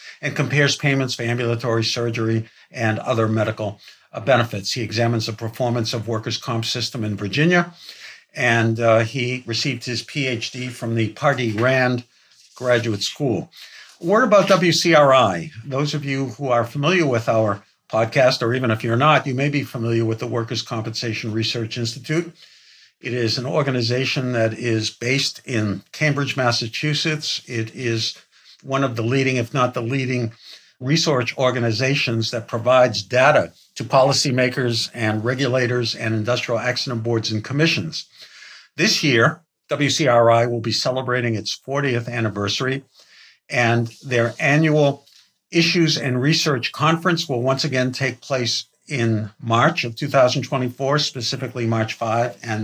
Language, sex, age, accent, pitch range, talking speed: English, male, 60-79, American, 115-140 Hz, 140 wpm